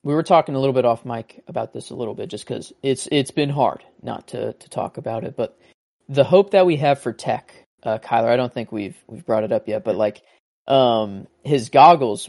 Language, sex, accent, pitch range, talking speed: English, male, American, 120-145 Hz, 240 wpm